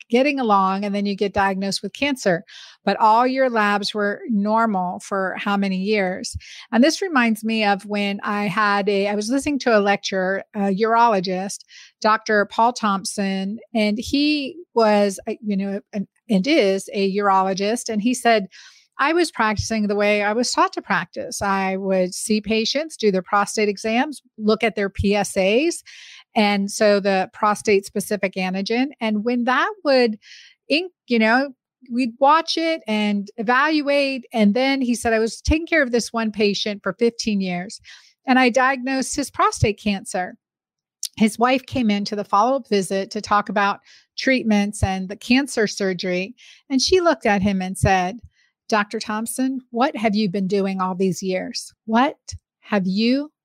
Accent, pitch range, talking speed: American, 200-250 Hz, 165 wpm